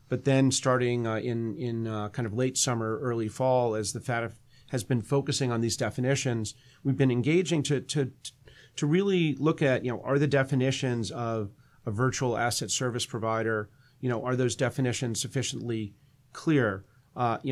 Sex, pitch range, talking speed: male, 115-135 Hz, 175 wpm